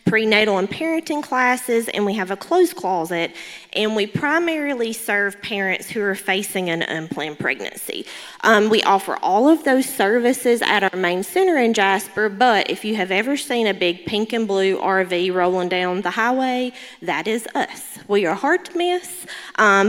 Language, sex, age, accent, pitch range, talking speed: English, female, 20-39, American, 185-245 Hz, 180 wpm